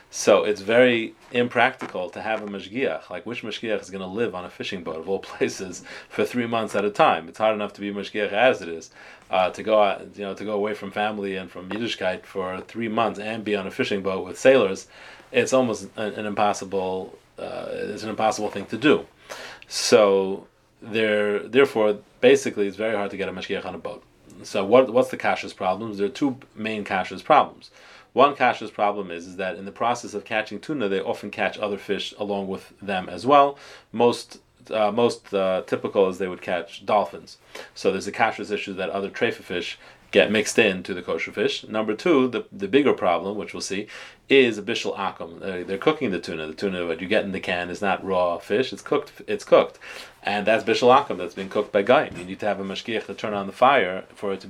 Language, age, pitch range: English, 30-49, 95-110 Hz